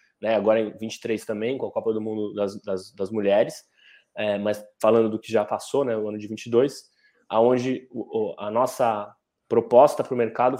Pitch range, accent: 105-130 Hz, Brazilian